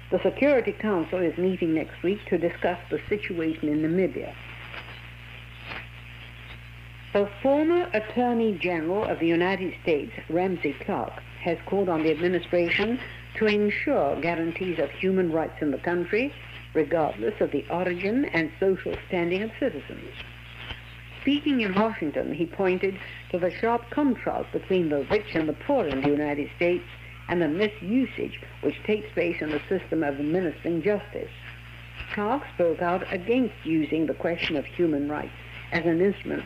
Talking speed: 150 wpm